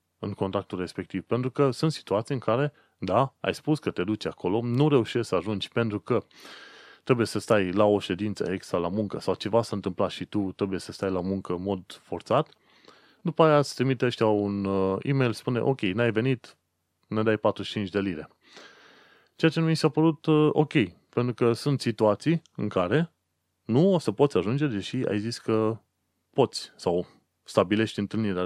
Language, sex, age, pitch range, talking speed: Romanian, male, 30-49, 100-135 Hz, 180 wpm